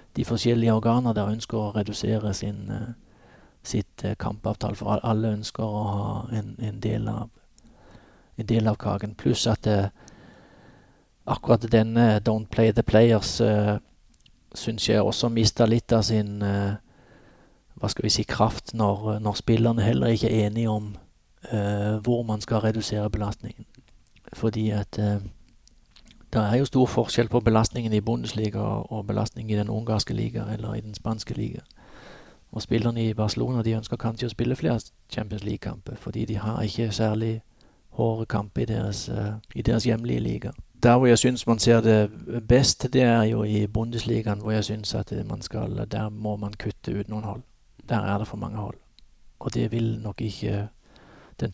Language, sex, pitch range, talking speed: Danish, male, 105-115 Hz, 170 wpm